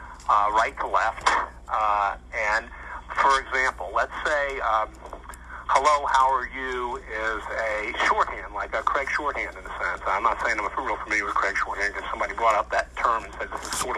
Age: 50-69